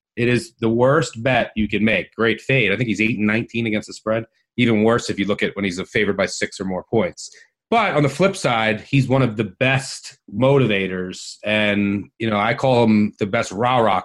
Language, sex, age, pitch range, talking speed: English, male, 30-49, 110-135 Hz, 220 wpm